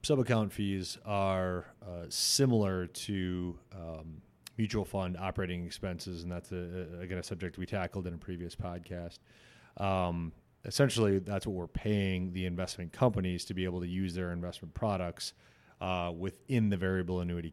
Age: 30-49